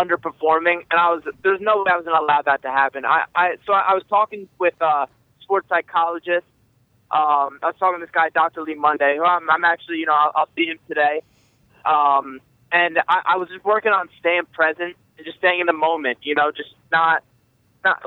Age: 20-39